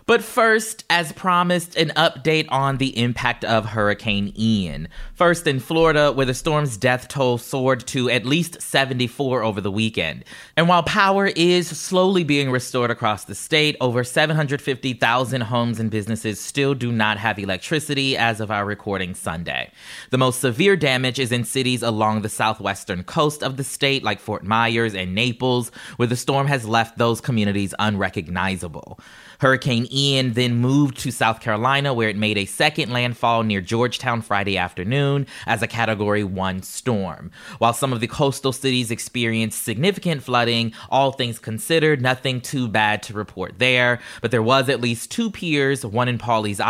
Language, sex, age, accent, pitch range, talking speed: English, male, 20-39, American, 110-140 Hz, 165 wpm